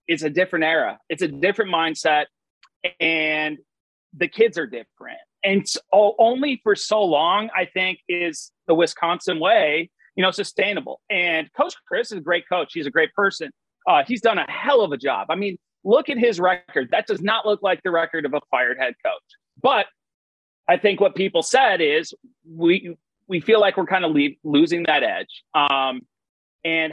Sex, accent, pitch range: male, American, 160-210 Hz